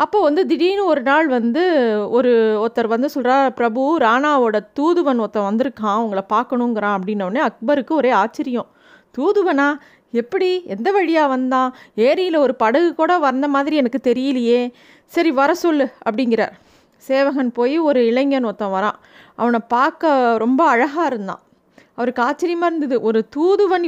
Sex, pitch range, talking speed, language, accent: female, 240-300 Hz, 135 wpm, Tamil, native